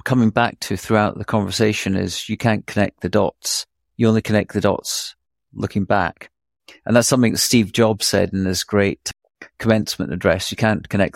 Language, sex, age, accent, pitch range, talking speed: English, male, 40-59, British, 100-115 Hz, 185 wpm